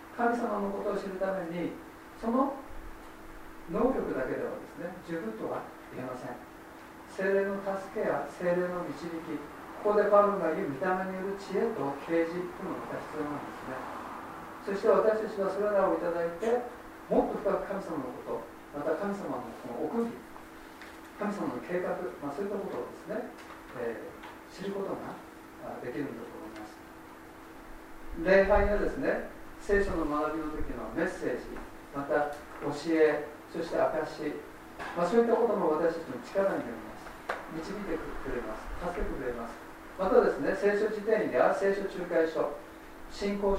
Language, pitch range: Japanese, 165-205 Hz